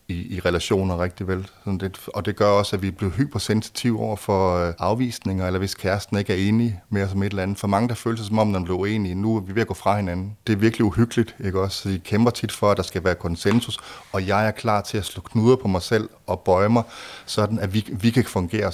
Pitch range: 95-110 Hz